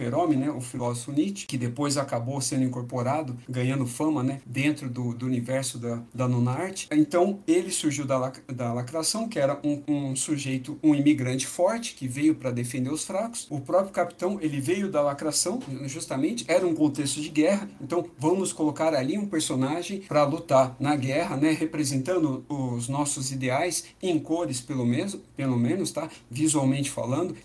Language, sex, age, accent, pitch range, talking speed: Portuguese, male, 50-69, Brazilian, 130-165 Hz, 170 wpm